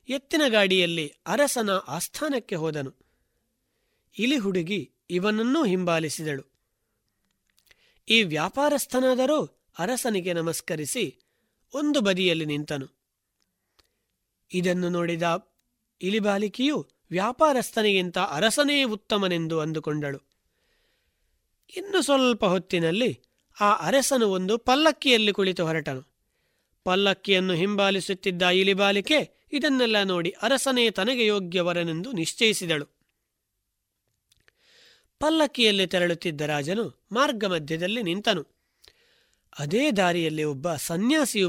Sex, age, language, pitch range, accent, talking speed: male, 30-49, Kannada, 165-235 Hz, native, 70 wpm